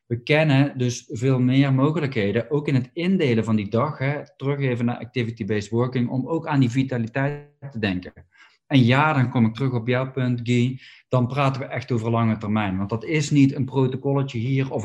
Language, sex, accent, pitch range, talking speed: Dutch, male, Dutch, 120-140 Hz, 200 wpm